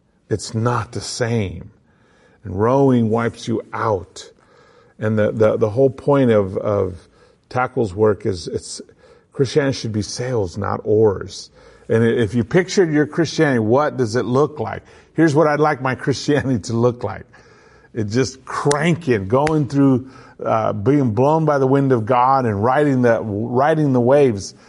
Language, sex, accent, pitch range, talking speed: English, male, American, 110-140 Hz, 160 wpm